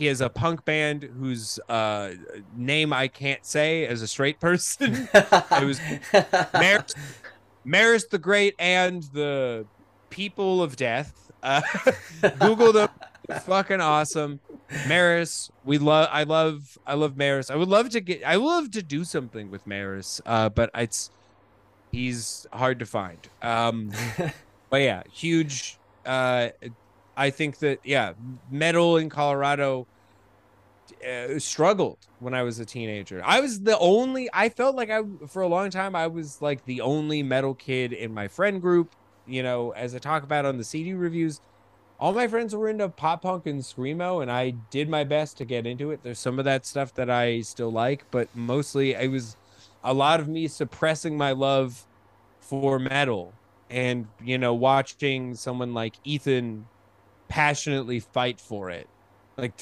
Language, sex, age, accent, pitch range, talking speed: English, male, 30-49, American, 115-160 Hz, 165 wpm